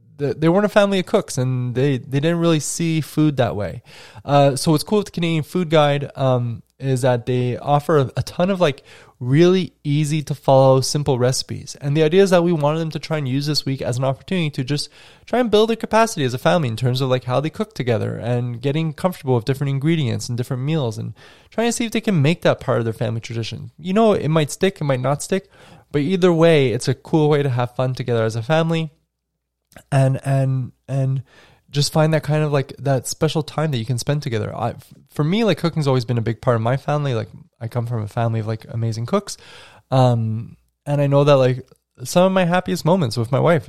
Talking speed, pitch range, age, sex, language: 235 wpm, 125-155 Hz, 20-39, male, English